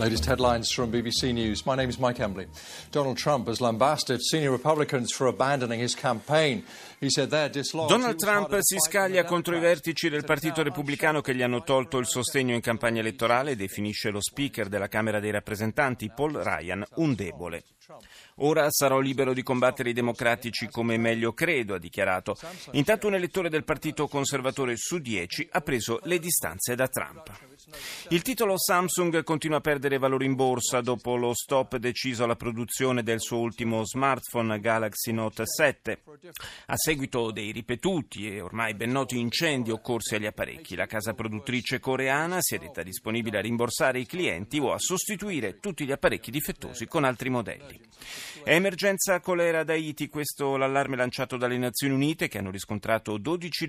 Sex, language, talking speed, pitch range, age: male, Italian, 140 wpm, 115-155 Hz, 40-59